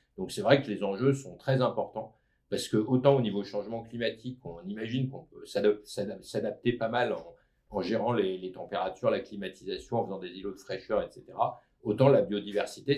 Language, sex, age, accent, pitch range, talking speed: French, male, 50-69, French, 105-130 Hz, 190 wpm